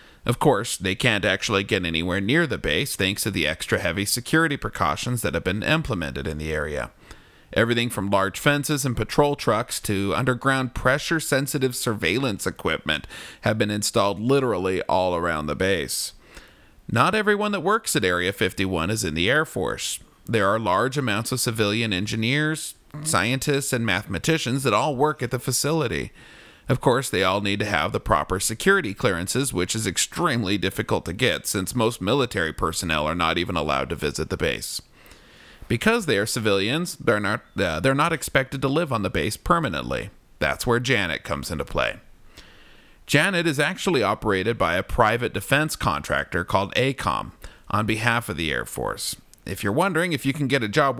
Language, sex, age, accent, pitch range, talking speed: English, male, 40-59, American, 95-140 Hz, 175 wpm